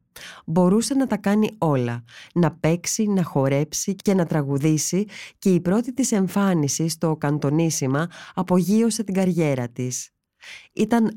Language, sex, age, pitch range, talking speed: Greek, female, 20-39, 150-200 Hz, 130 wpm